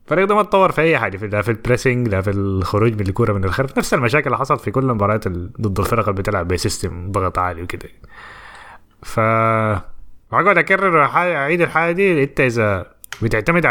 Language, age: Arabic, 20-39